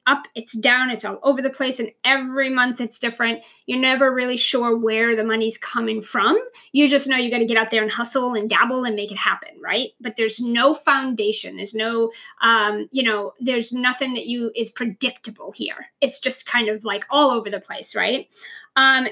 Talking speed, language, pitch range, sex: 210 wpm, English, 225-265 Hz, female